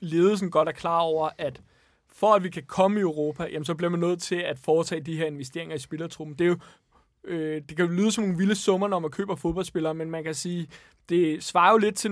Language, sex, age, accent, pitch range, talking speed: Danish, male, 20-39, native, 160-200 Hz, 235 wpm